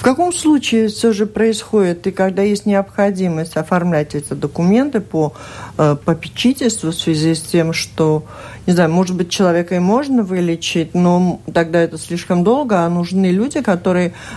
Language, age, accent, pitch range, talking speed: Russian, 50-69, native, 160-185 Hz, 160 wpm